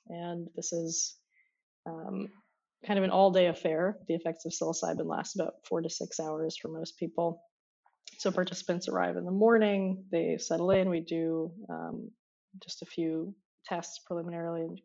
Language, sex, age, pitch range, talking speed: English, female, 20-39, 165-200 Hz, 160 wpm